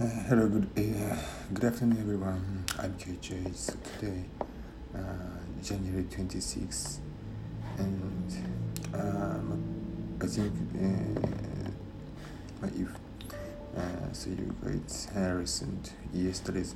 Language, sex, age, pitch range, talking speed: English, male, 50-69, 90-100 Hz, 100 wpm